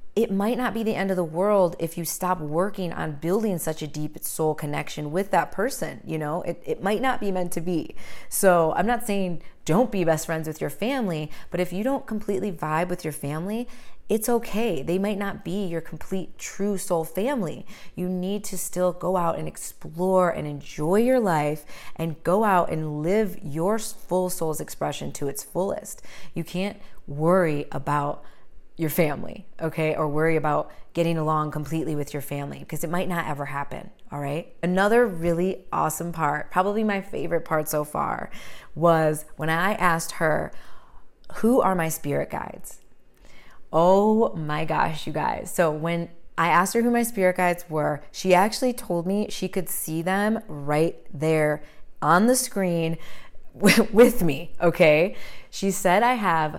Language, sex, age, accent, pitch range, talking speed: English, female, 30-49, American, 155-200 Hz, 175 wpm